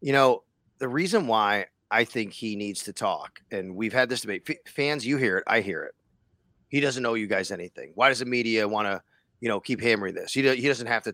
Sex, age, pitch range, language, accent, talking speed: male, 30-49, 110-155 Hz, English, American, 255 wpm